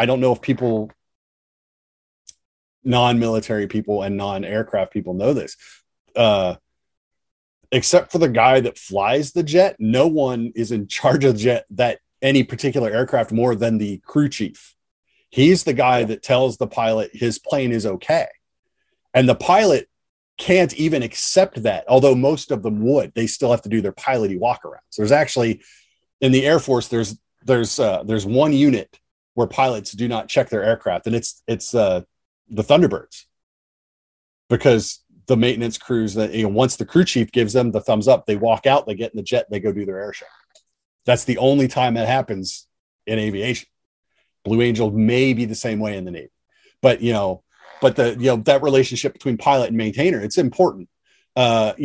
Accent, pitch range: American, 110-135 Hz